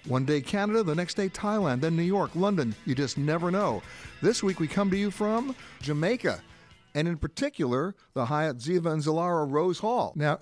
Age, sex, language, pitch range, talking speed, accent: 60-79, male, English, 125-170 Hz, 195 wpm, American